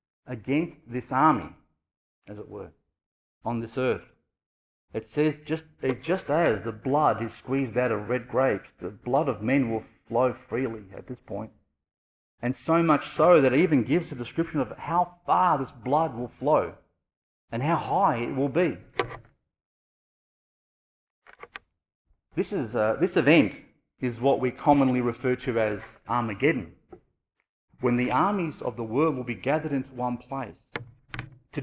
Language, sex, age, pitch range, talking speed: English, male, 40-59, 110-140 Hz, 155 wpm